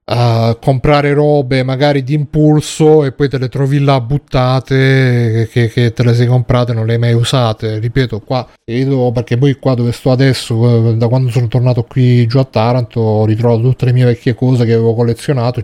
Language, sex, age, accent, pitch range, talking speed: Italian, male, 30-49, native, 120-140 Hz, 200 wpm